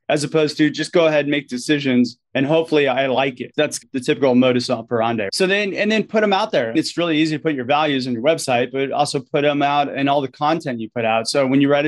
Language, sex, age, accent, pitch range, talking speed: English, male, 30-49, American, 130-160 Hz, 270 wpm